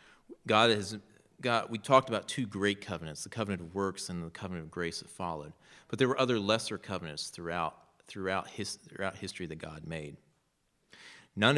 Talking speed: 180 wpm